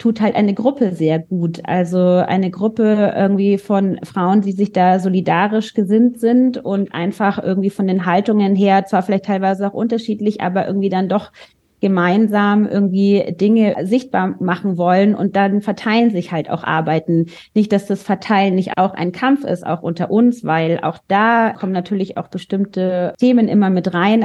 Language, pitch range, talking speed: German, 180-205 Hz, 175 wpm